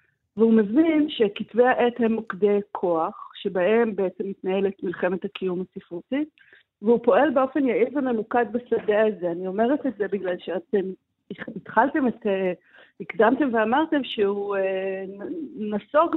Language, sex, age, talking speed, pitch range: Hebrew, female, 50-69, 120 wpm, 185-250 Hz